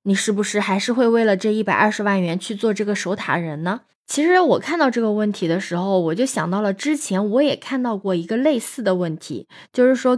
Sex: female